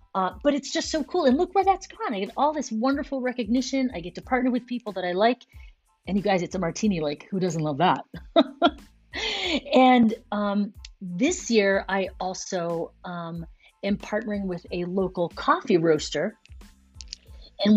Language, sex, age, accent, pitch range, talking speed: English, female, 30-49, American, 180-225 Hz, 175 wpm